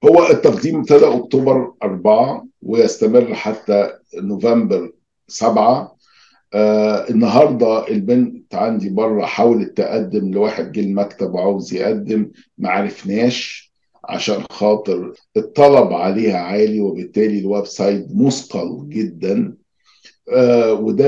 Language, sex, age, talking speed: Arabic, male, 50-69, 95 wpm